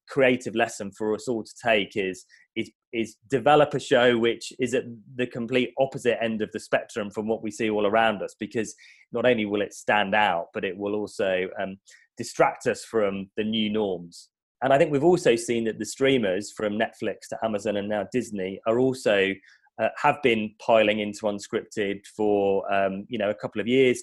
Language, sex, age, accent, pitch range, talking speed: English, male, 30-49, British, 100-115 Hz, 200 wpm